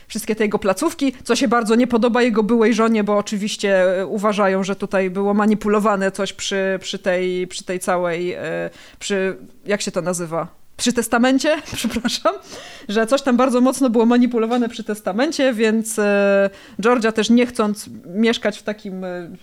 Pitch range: 205-250 Hz